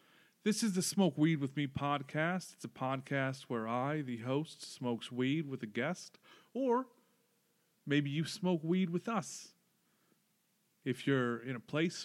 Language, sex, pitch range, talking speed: English, male, 130-175 Hz, 160 wpm